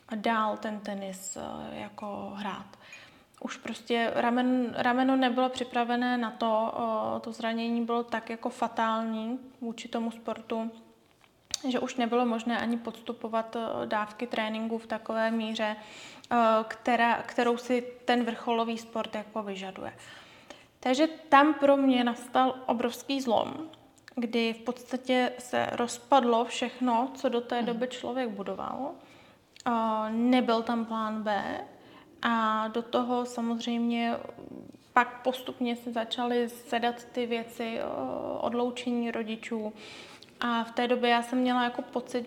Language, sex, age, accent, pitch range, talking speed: Czech, female, 20-39, native, 230-255 Hz, 125 wpm